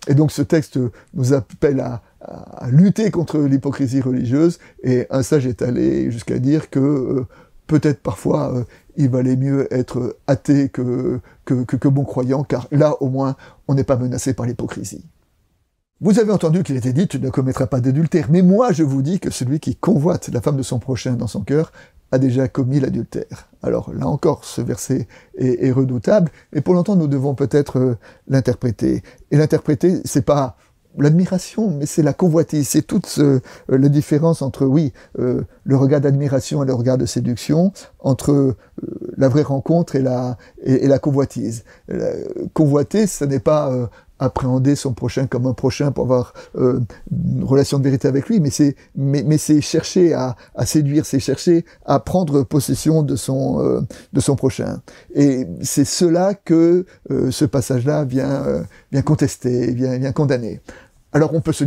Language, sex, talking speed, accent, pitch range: French, male, 185 wpm, French, 130-155 Hz